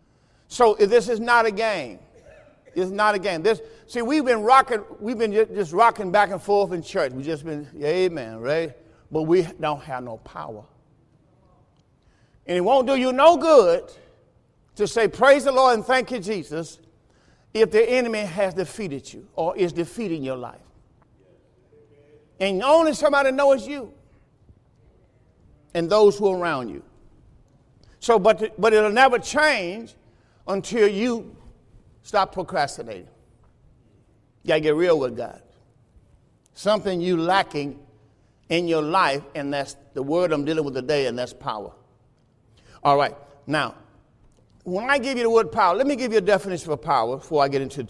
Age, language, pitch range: 50-69, English, 140-225 Hz